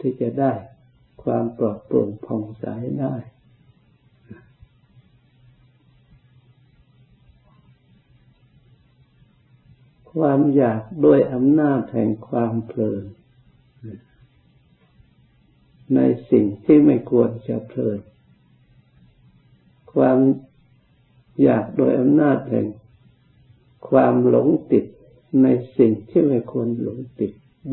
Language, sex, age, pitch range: Thai, male, 60-79, 115-130 Hz